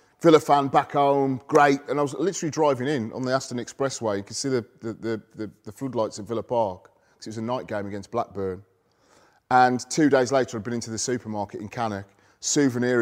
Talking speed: 215 wpm